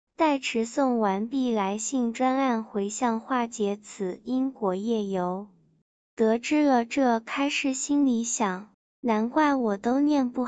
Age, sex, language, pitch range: 20-39, male, Chinese, 215-270 Hz